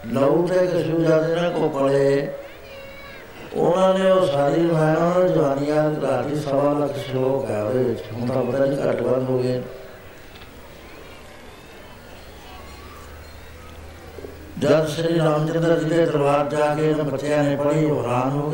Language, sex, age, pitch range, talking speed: Punjabi, male, 60-79, 125-160 Hz, 125 wpm